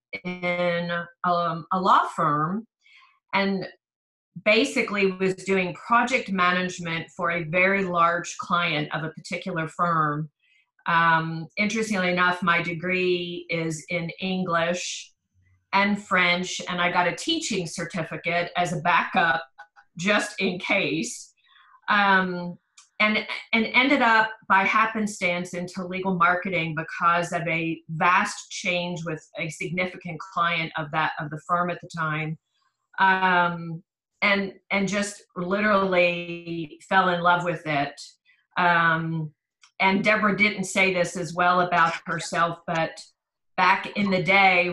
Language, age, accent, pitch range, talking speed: English, 40-59, American, 170-190 Hz, 125 wpm